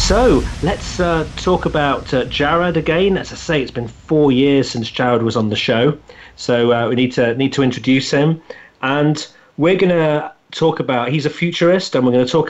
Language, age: English, 40-59